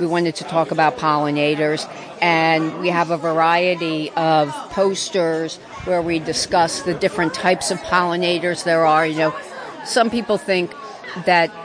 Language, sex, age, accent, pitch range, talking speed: English, female, 50-69, American, 160-195 Hz, 150 wpm